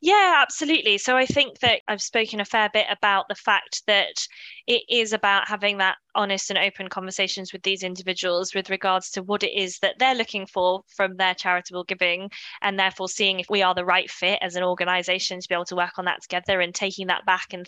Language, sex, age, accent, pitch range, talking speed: English, female, 20-39, British, 190-230 Hz, 225 wpm